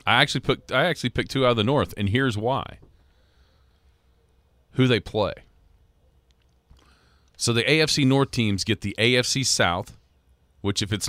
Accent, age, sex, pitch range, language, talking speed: American, 40-59, male, 75-110 Hz, English, 155 wpm